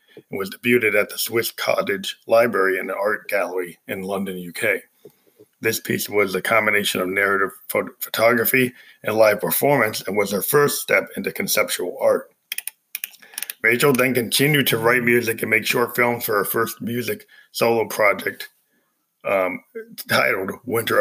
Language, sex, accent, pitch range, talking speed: English, male, American, 105-125 Hz, 150 wpm